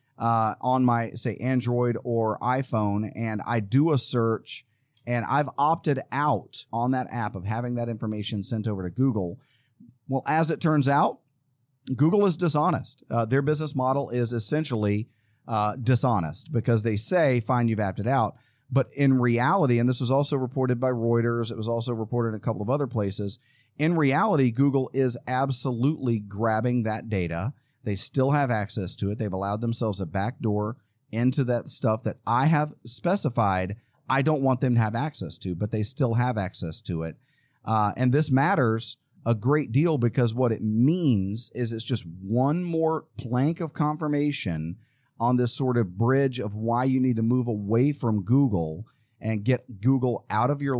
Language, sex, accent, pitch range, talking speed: English, male, American, 110-135 Hz, 175 wpm